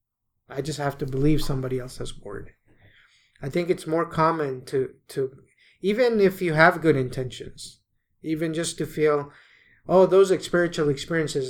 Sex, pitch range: male, 140-180 Hz